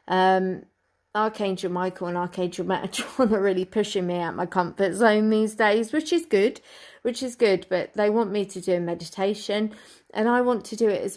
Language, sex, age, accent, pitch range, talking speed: English, female, 30-49, British, 180-200 Hz, 205 wpm